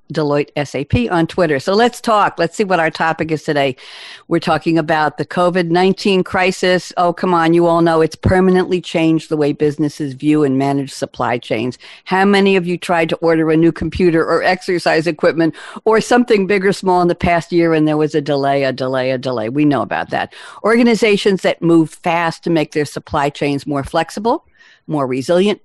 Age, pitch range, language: 50-69, 145-185 Hz, English